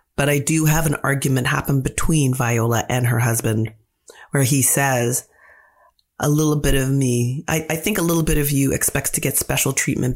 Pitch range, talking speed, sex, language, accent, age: 120-145 Hz, 195 wpm, female, English, American, 30-49